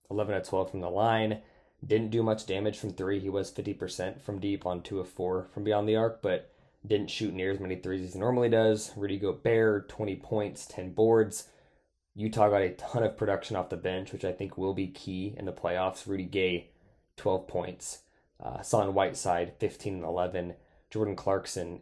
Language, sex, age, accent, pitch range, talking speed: English, male, 20-39, American, 90-105 Hz, 195 wpm